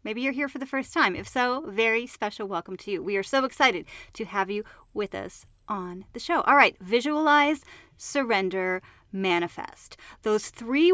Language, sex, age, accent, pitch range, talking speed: English, female, 30-49, American, 205-295 Hz, 180 wpm